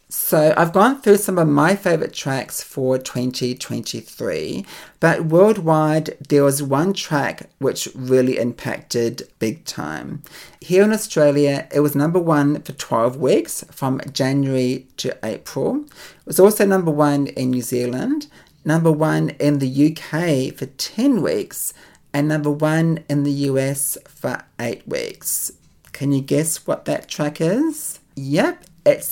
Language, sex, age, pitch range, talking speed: English, male, 40-59, 135-165 Hz, 145 wpm